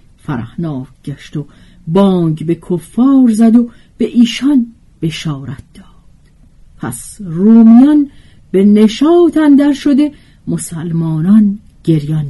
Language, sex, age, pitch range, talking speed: Persian, female, 50-69, 155-240 Hz, 100 wpm